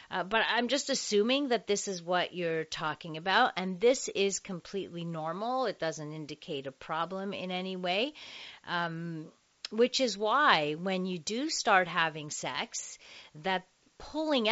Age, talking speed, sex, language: 40-59, 155 wpm, female, English